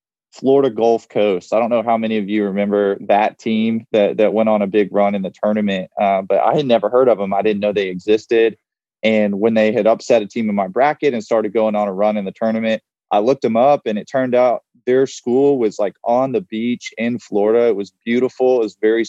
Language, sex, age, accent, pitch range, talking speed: English, male, 20-39, American, 105-115 Hz, 245 wpm